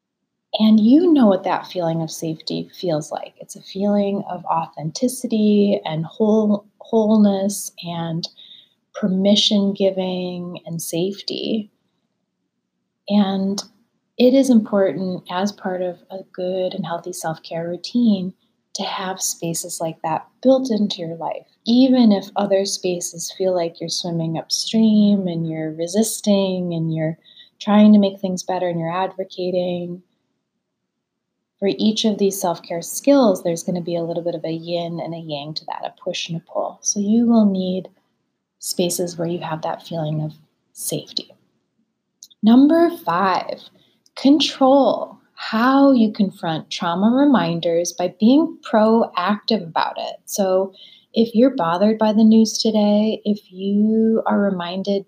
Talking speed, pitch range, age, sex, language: 140 wpm, 175-220 Hz, 30-49, female, English